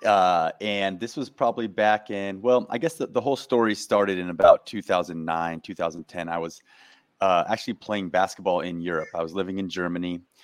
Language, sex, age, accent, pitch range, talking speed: English, male, 30-49, American, 90-105 Hz, 185 wpm